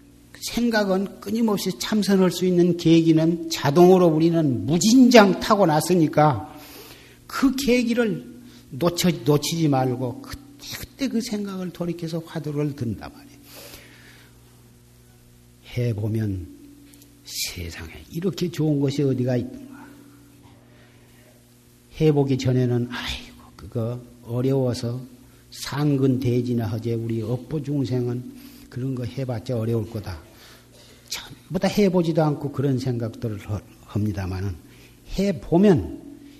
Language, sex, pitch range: Korean, male, 105-165 Hz